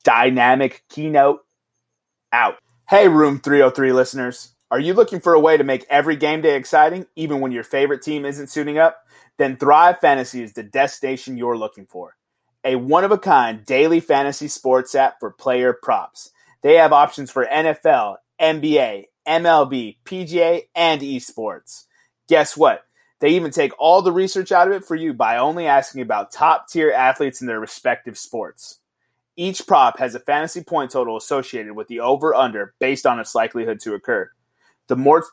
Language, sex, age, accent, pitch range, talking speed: English, male, 30-49, American, 130-165 Hz, 165 wpm